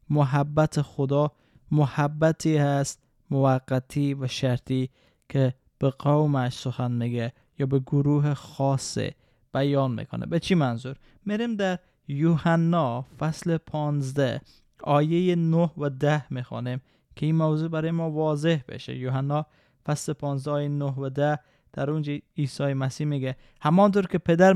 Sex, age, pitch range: male, 20-39, 130-155 Hz